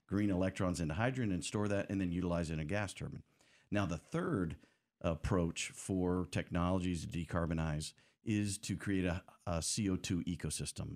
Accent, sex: American, male